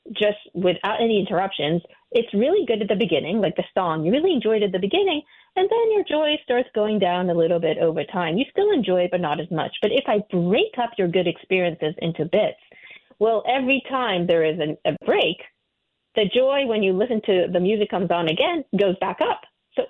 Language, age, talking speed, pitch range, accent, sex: English, 40-59, 215 wpm, 175-230 Hz, American, female